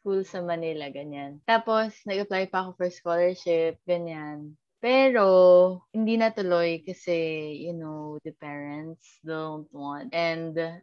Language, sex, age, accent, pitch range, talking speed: Filipino, female, 20-39, native, 155-225 Hz, 125 wpm